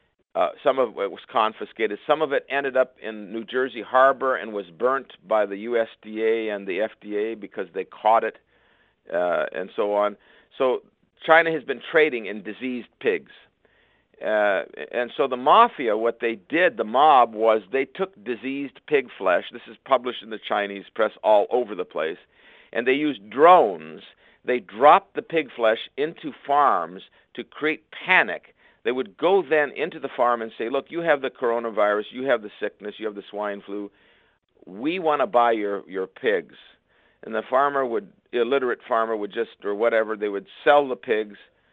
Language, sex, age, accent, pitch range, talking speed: English, male, 50-69, American, 105-135 Hz, 180 wpm